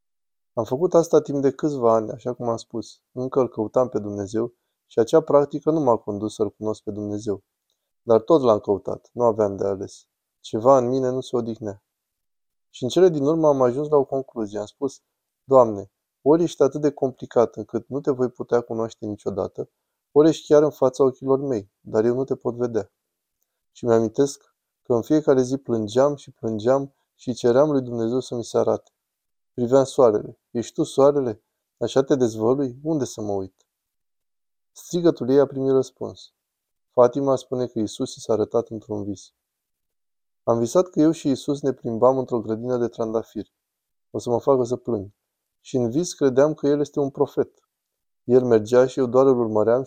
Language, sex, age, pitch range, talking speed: Romanian, male, 20-39, 115-140 Hz, 190 wpm